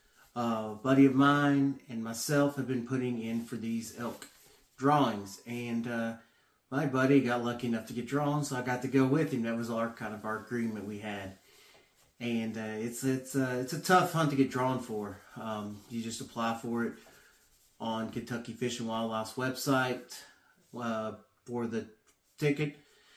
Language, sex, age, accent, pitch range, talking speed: English, male, 30-49, American, 110-130 Hz, 180 wpm